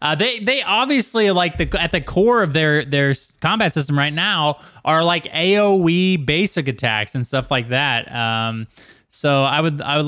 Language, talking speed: English, 185 wpm